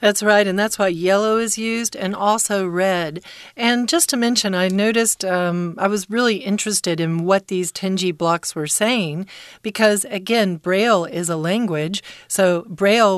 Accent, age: American, 40-59